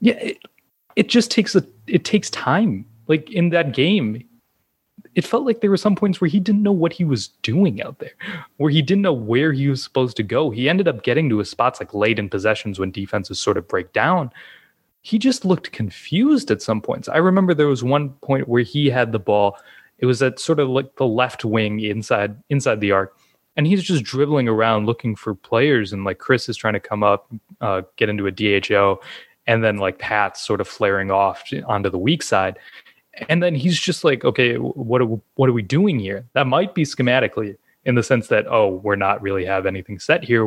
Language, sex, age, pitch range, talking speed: English, male, 20-39, 105-170 Hz, 220 wpm